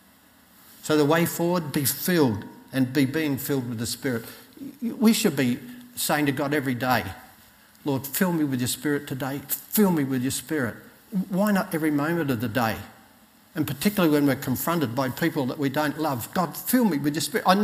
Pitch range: 150-215 Hz